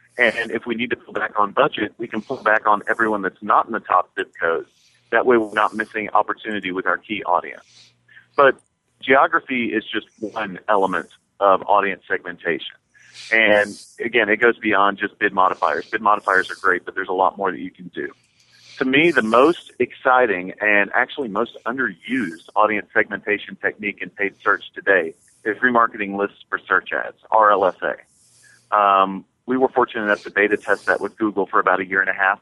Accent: American